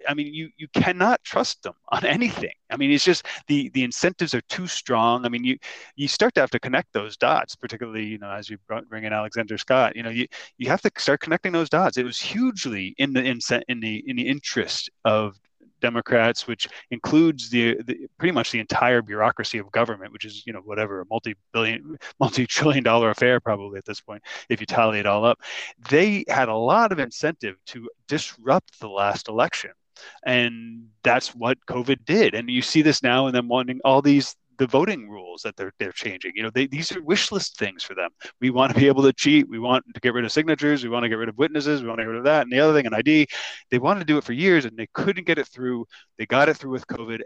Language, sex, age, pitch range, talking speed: English, male, 30-49, 115-150 Hz, 240 wpm